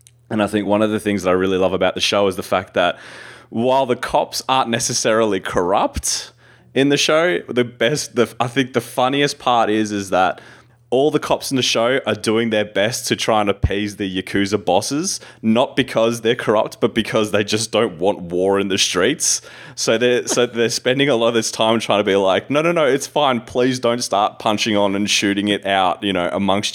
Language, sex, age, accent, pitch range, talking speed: English, male, 20-39, Australian, 95-120 Hz, 225 wpm